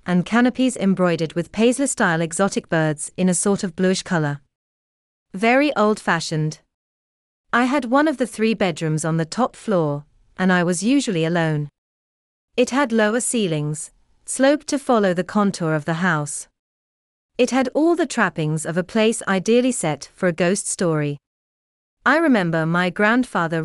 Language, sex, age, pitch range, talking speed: English, female, 40-59, 155-220 Hz, 155 wpm